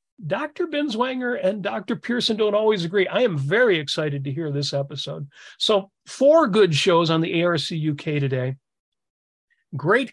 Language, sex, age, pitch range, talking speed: English, male, 40-59, 150-200 Hz, 155 wpm